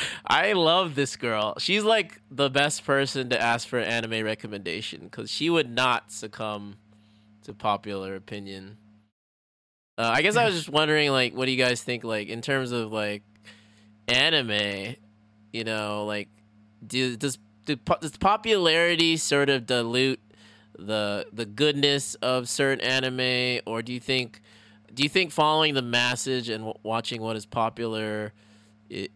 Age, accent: 20-39, American